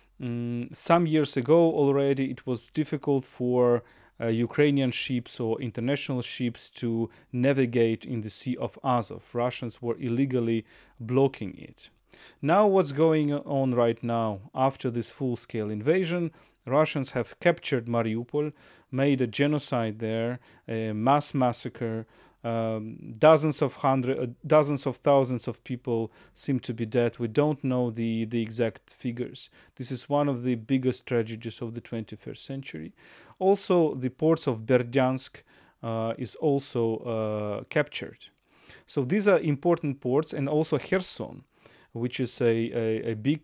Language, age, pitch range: English, 40-59, 115-150 Hz